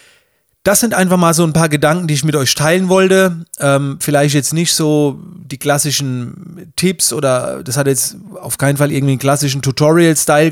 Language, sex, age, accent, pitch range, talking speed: German, male, 30-49, German, 145-180 Hz, 190 wpm